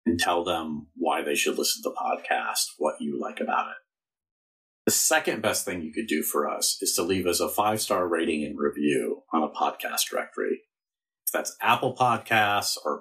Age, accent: 40-59, American